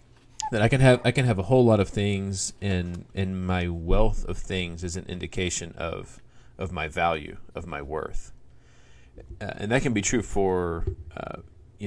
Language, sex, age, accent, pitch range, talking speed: English, male, 40-59, American, 90-105 Hz, 185 wpm